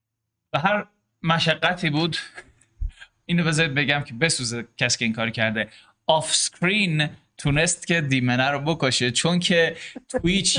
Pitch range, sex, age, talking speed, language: 115-160 Hz, male, 20-39, 130 wpm, Persian